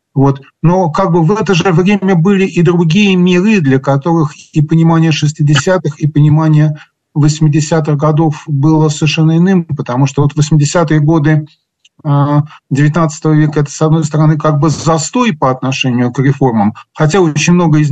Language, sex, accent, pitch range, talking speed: Russian, male, native, 140-165 Hz, 155 wpm